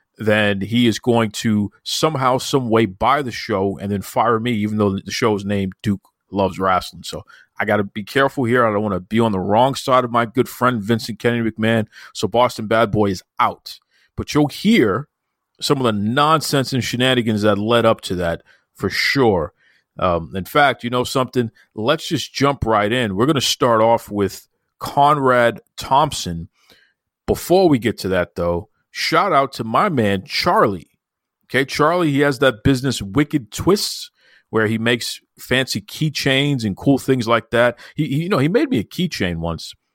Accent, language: American, English